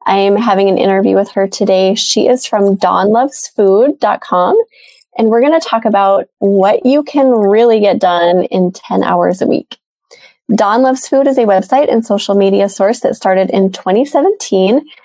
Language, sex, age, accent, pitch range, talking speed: English, female, 20-39, American, 190-230 Hz, 170 wpm